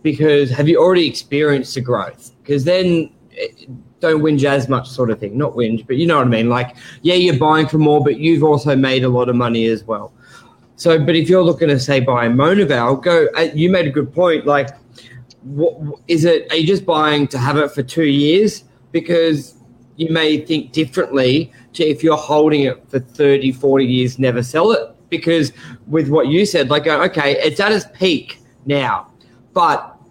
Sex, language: male, English